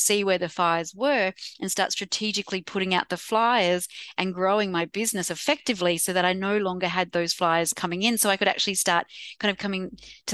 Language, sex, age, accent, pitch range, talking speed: English, female, 30-49, Australian, 170-195 Hz, 210 wpm